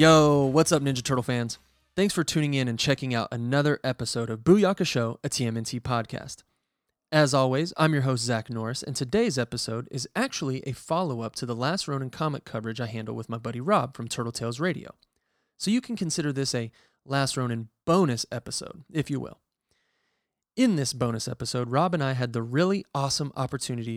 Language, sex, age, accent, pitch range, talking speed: English, male, 30-49, American, 120-145 Hz, 190 wpm